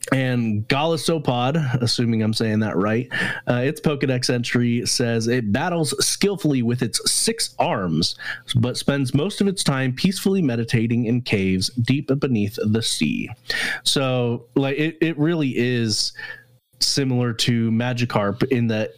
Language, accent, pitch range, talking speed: English, American, 115-135 Hz, 140 wpm